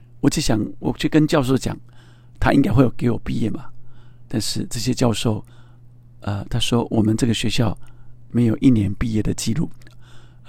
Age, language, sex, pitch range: 50-69, Chinese, male, 110-125 Hz